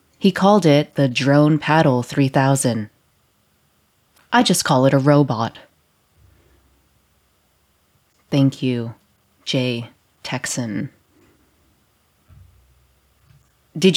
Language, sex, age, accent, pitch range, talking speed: English, female, 30-49, American, 120-160 Hz, 75 wpm